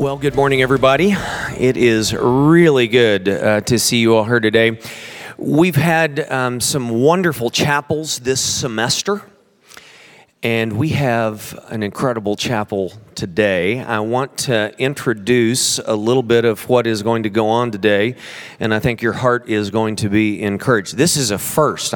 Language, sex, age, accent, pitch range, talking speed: English, male, 40-59, American, 115-165 Hz, 160 wpm